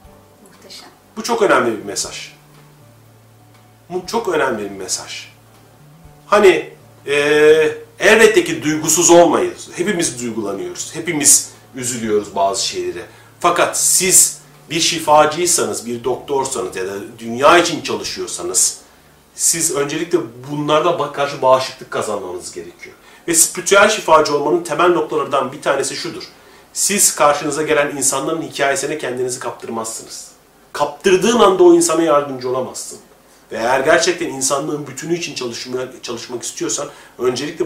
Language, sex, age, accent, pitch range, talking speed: Turkish, male, 40-59, native, 130-185 Hz, 115 wpm